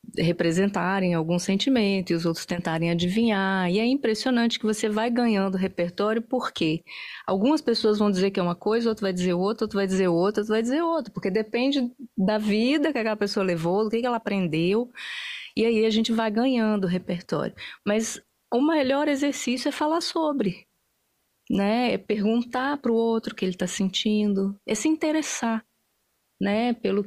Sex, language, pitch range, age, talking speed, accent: female, Portuguese, 190-235 Hz, 30-49, 175 wpm, Brazilian